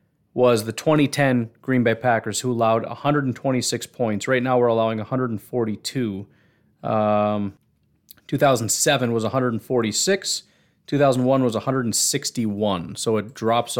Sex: male